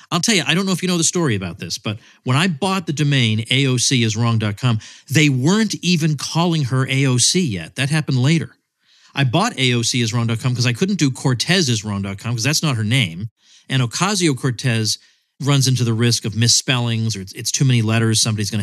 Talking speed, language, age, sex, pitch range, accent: 185 wpm, English, 40-59, male, 120-160 Hz, American